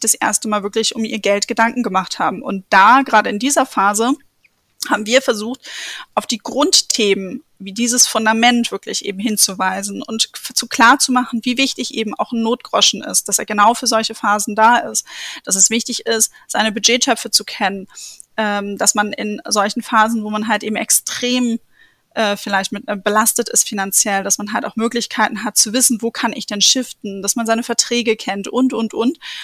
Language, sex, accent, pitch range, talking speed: German, female, German, 210-240 Hz, 190 wpm